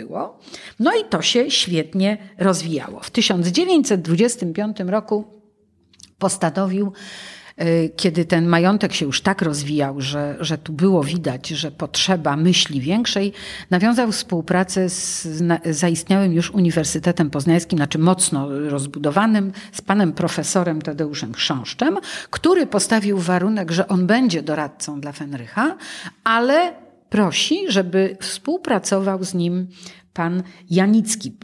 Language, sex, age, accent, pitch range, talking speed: Polish, female, 50-69, native, 160-205 Hz, 115 wpm